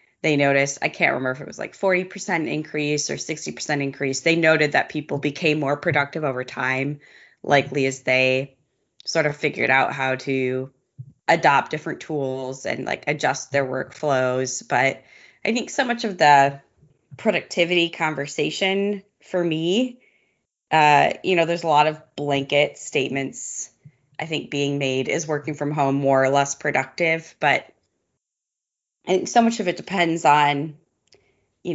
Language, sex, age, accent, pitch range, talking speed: English, female, 20-39, American, 140-170 Hz, 155 wpm